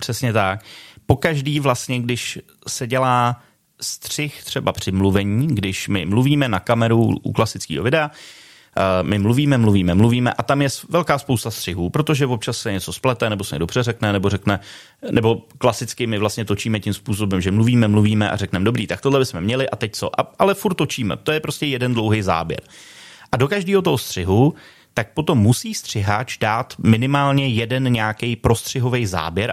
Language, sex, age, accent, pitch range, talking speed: Czech, male, 30-49, native, 105-135 Hz, 175 wpm